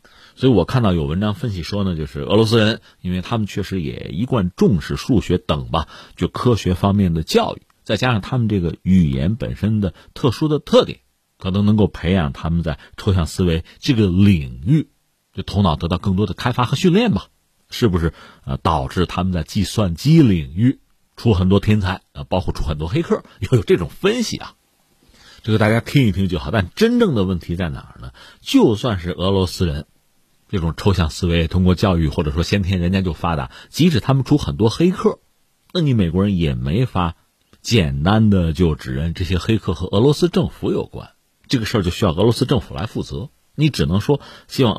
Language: Chinese